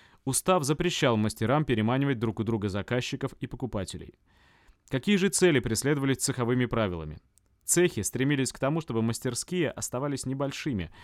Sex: male